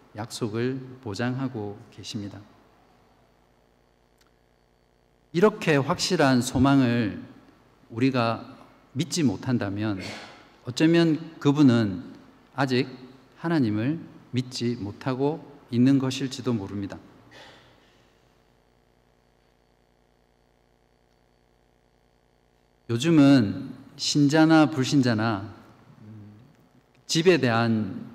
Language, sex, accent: Korean, male, native